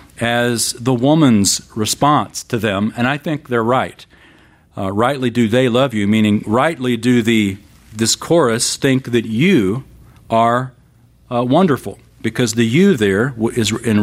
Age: 40-59